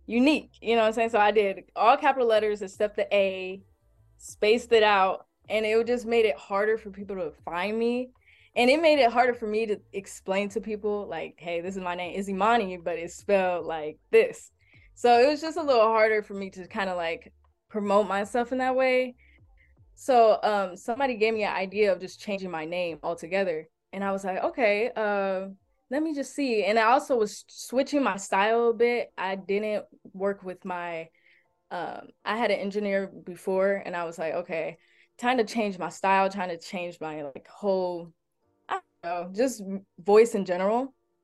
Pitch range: 185-230 Hz